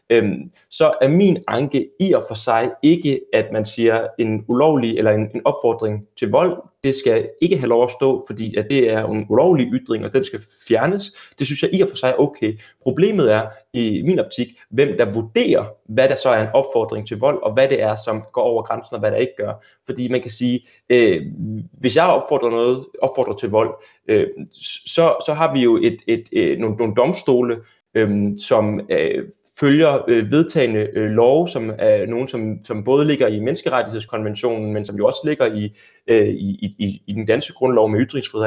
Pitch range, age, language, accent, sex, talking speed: 110-155 Hz, 20-39, Danish, native, male, 205 wpm